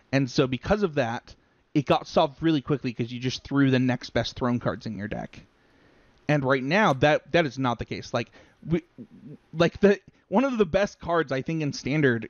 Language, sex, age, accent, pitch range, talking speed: English, male, 30-49, American, 120-150 Hz, 215 wpm